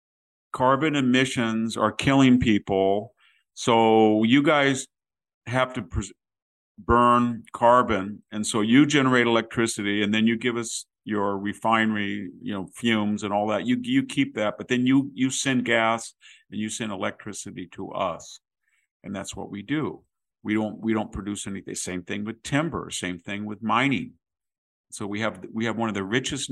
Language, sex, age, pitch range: English, male, 50-69, 100-125 Hz